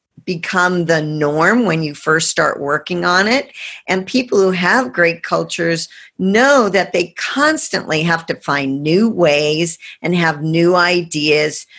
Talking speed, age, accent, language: 150 wpm, 50-69, American, English